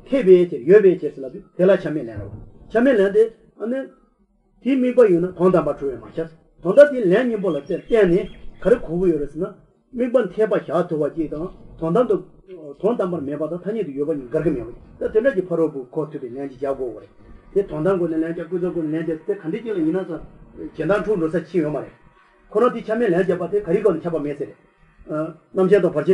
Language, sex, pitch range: English, male, 155-205 Hz